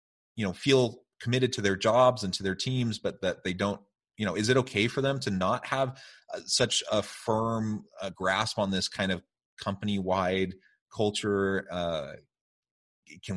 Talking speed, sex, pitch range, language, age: 170 wpm, male, 95-115 Hz, English, 30-49